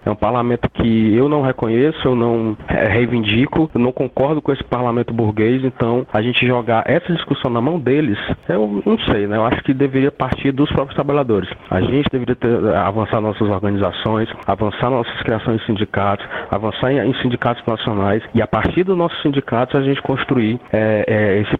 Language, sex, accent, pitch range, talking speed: Portuguese, male, Brazilian, 110-140 Hz, 185 wpm